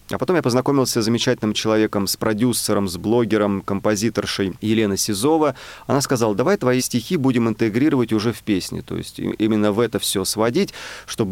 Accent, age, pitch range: native, 30-49, 100-120 Hz